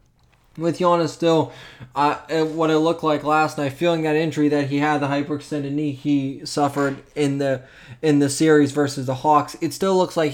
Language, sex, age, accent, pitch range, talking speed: English, male, 20-39, American, 135-150 Hz, 190 wpm